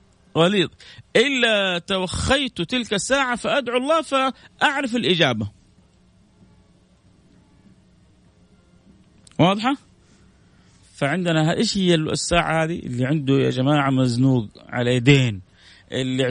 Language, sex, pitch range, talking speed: Arabic, male, 140-195 Hz, 85 wpm